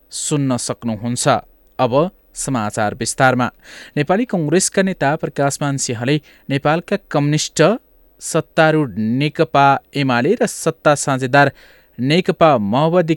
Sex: male